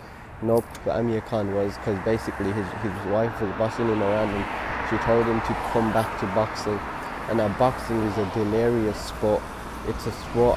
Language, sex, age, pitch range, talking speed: English, male, 20-39, 100-115 Hz, 195 wpm